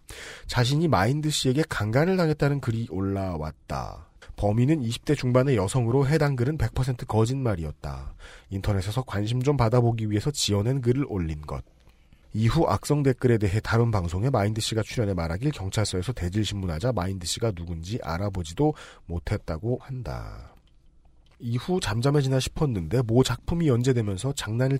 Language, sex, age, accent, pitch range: Korean, male, 40-59, native, 100-140 Hz